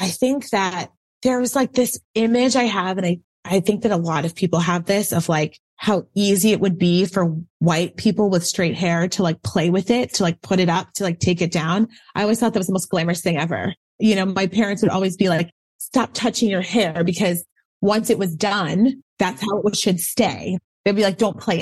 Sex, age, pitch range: female, 30-49, 180-235 Hz